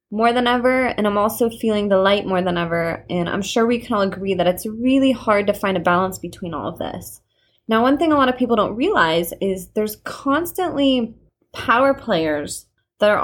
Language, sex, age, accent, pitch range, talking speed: English, female, 20-39, American, 180-235 Hz, 215 wpm